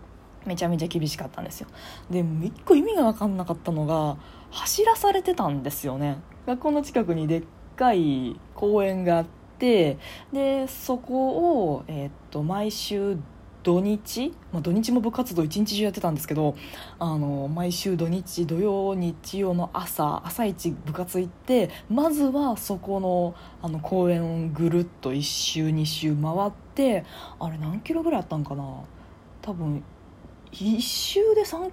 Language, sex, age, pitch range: Japanese, female, 20-39, 155-255 Hz